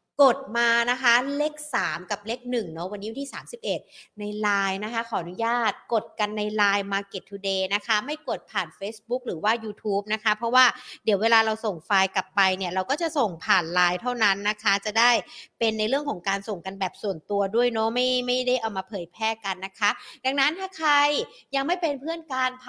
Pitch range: 200-265 Hz